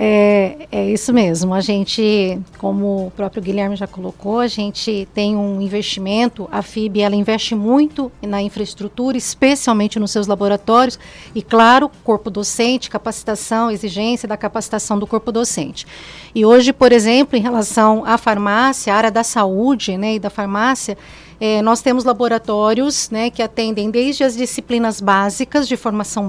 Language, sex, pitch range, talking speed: Portuguese, female, 210-240 Hz, 150 wpm